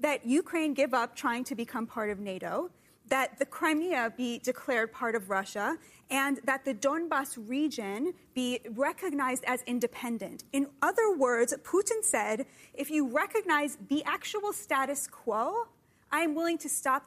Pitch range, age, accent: 245-320 Hz, 20-39, American